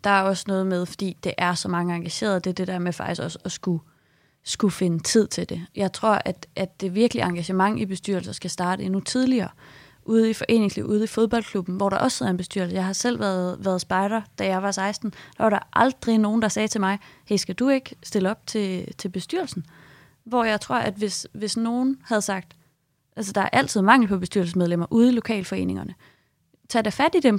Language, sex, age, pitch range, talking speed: Danish, female, 20-39, 190-225 Hz, 225 wpm